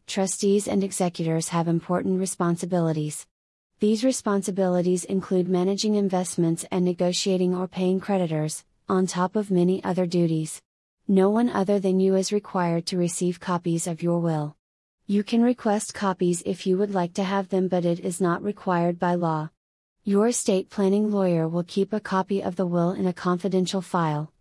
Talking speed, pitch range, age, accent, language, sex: 165 wpm, 175-195 Hz, 30-49, American, English, female